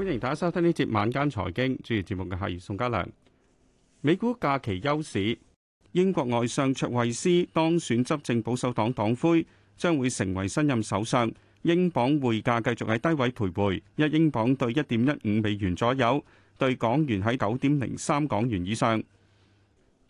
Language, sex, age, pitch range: Chinese, male, 40-59, 110-160 Hz